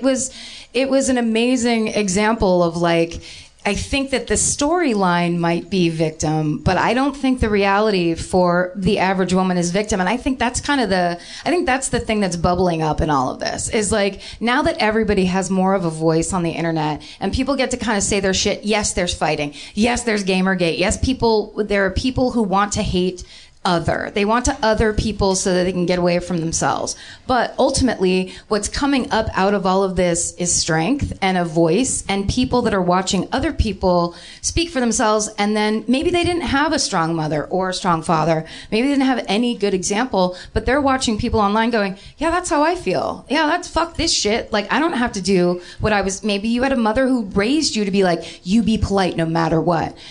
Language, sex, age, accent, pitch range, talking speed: English, female, 30-49, American, 180-240 Hz, 220 wpm